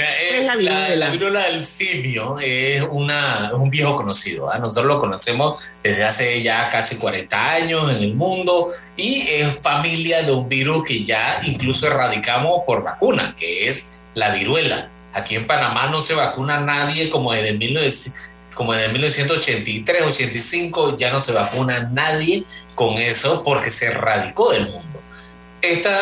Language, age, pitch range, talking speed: Spanish, 30-49, 110-160 Hz, 150 wpm